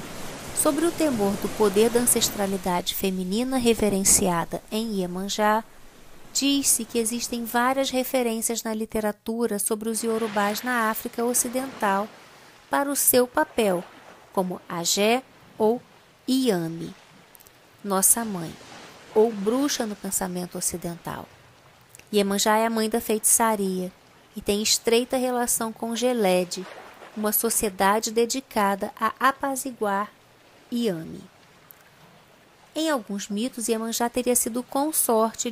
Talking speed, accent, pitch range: 110 wpm, Brazilian, 200-245 Hz